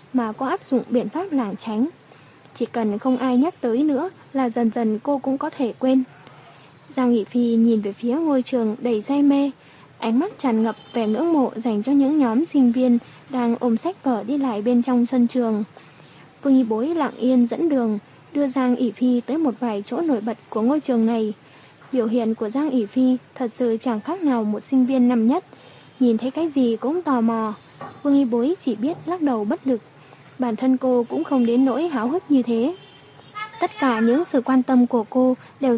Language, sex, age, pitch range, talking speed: Vietnamese, female, 20-39, 225-270 Hz, 220 wpm